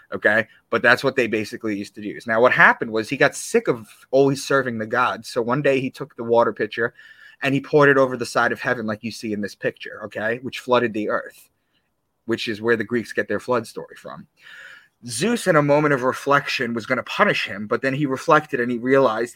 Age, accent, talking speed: 30-49, American, 240 wpm